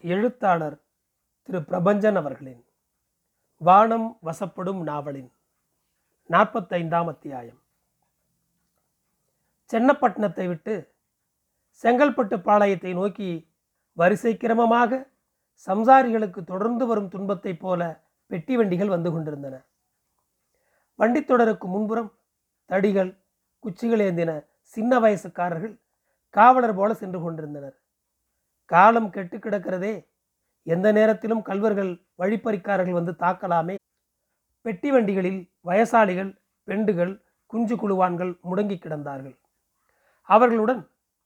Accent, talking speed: native, 80 wpm